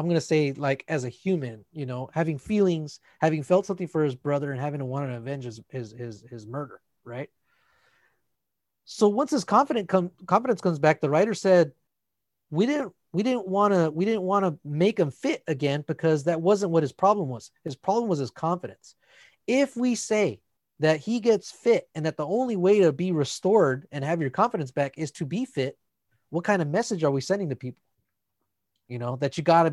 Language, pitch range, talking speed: English, 135-190 Hz, 210 wpm